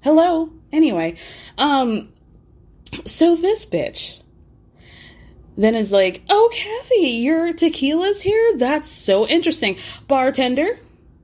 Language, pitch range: English, 185-295 Hz